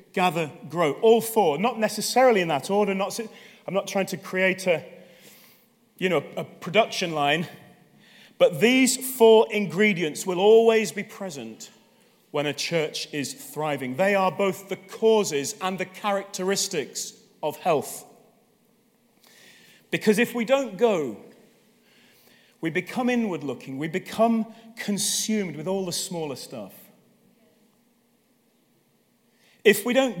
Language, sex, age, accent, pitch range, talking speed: English, male, 40-59, British, 170-225 Hz, 125 wpm